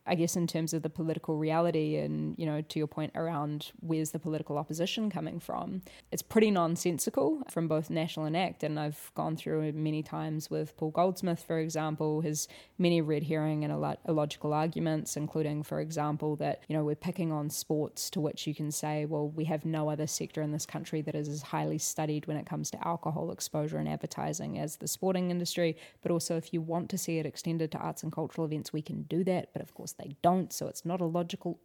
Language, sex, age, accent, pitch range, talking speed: English, female, 20-39, Australian, 155-175 Hz, 230 wpm